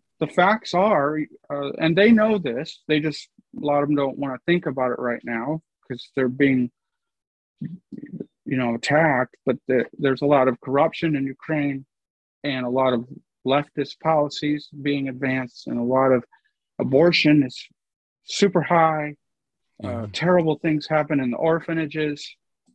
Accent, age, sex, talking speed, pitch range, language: American, 40-59, male, 155 wpm, 135-165 Hz, English